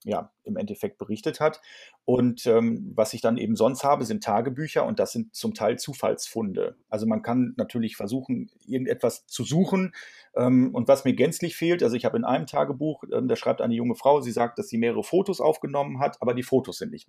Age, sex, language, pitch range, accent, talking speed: 40-59, male, German, 115-175 Hz, German, 210 wpm